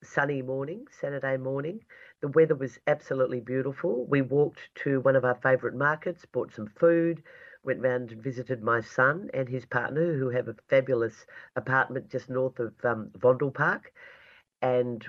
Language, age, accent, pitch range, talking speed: English, 50-69, Australian, 125-150 Hz, 160 wpm